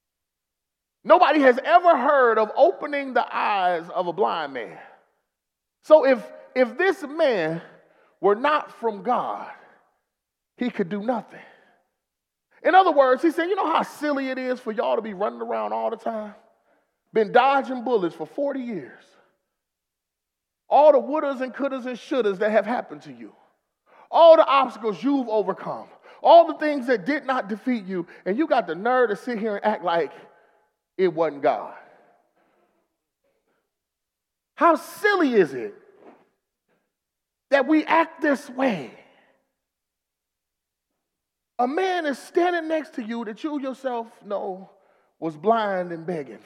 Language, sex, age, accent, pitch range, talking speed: English, male, 30-49, American, 190-290 Hz, 145 wpm